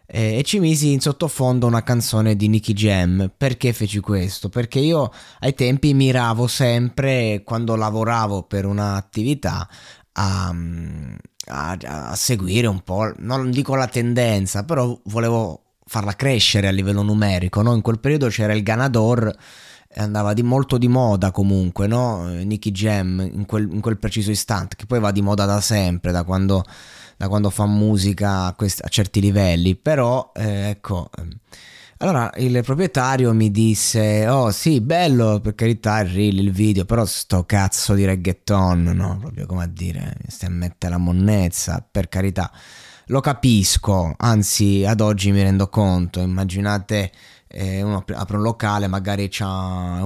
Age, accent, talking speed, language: 20-39, native, 160 wpm, Italian